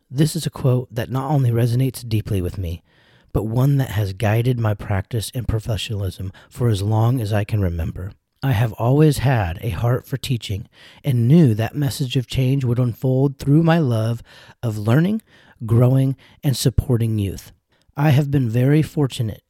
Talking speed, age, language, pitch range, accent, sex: 175 wpm, 40-59, English, 115-145 Hz, American, male